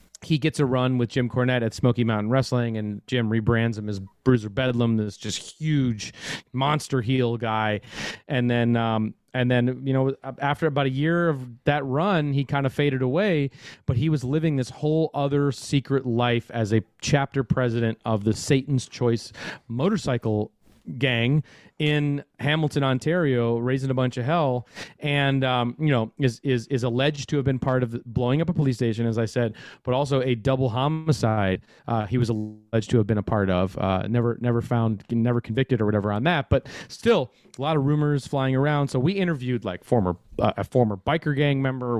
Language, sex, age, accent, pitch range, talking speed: English, male, 30-49, American, 115-140 Hz, 195 wpm